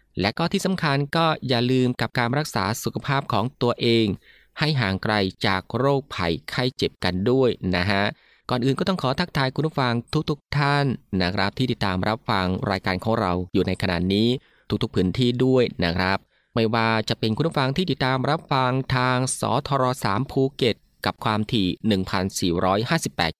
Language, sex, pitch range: Thai, male, 100-130 Hz